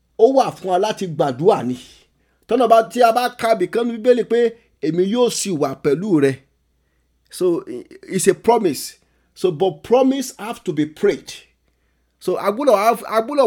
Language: English